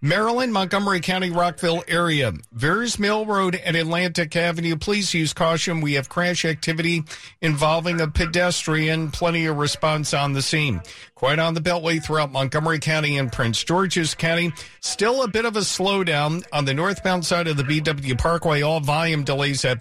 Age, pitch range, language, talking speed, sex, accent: 50-69, 155-190 Hz, English, 170 wpm, male, American